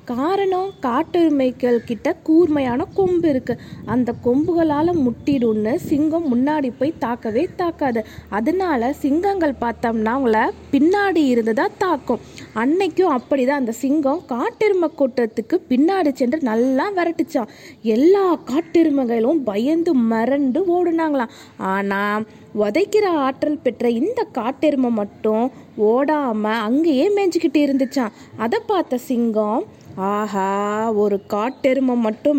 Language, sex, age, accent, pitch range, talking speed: Tamil, female, 20-39, native, 230-320 Hz, 100 wpm